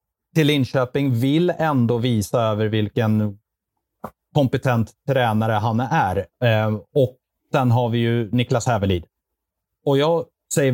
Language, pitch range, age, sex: Swedish, 110-140 Hz, 30-49, male